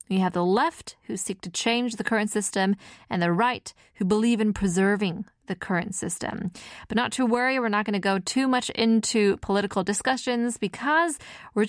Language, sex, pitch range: Korean, female, 190-250 Hz